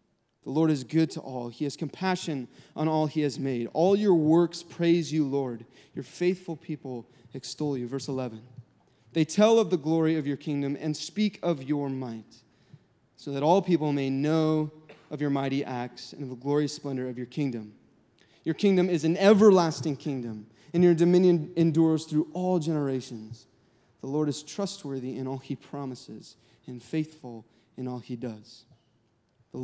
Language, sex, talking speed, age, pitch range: English, male, 175 wpm, 20-39, 125-155 Hz